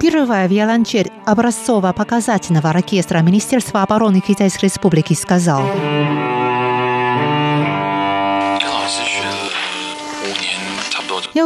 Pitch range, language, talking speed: 160-230 Hz, Russian, 60 wpm